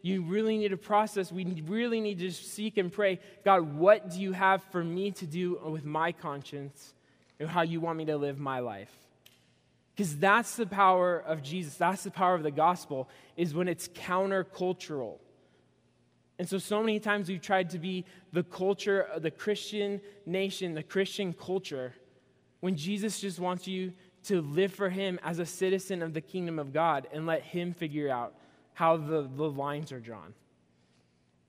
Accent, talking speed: American, 185 wpm